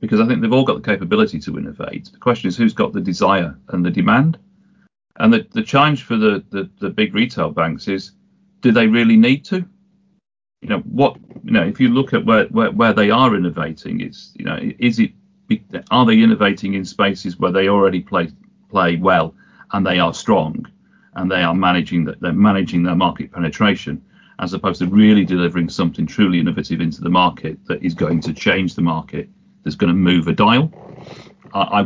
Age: 40-59